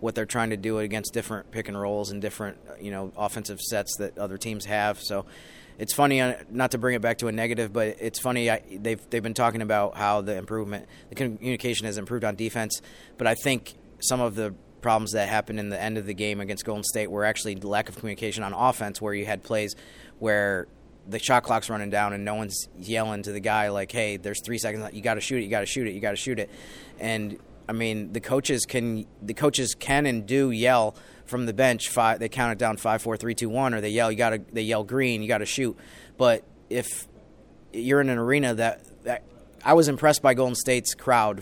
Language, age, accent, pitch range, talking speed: English, 30-49, American, 105-120 Hz, 230 wpm